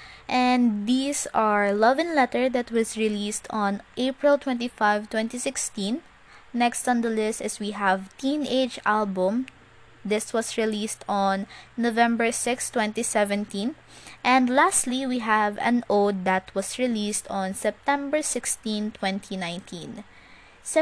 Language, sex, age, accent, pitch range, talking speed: English, female, 20-39, Filipino, 205-255 Hz, 120 wpm